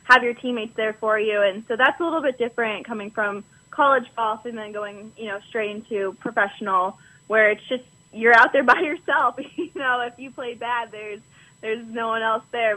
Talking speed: 210 wpm